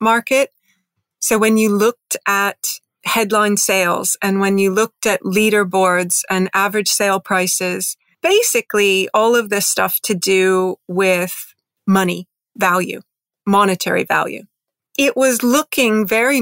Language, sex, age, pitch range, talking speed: English, female, 30-49, 185-215 Hz, 125 wpm